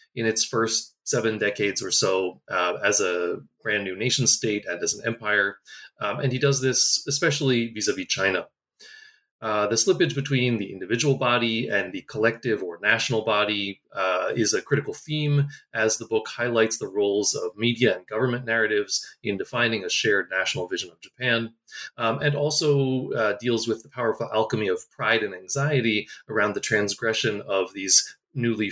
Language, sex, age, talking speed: English, male, 30-49, 170 wpm